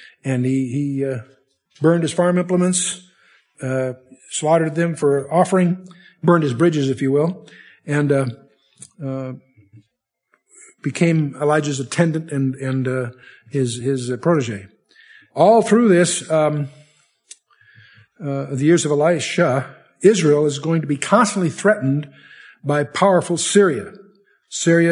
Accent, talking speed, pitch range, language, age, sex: American, 125 wpm, 130-170 Hz, English, 50-69, male